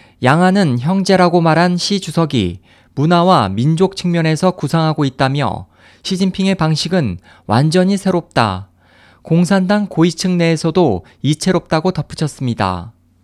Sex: male